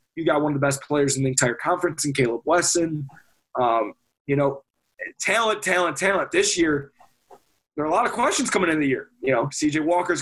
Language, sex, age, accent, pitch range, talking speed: English, male, 20-39, American, 145-195 Hz, 210 wpm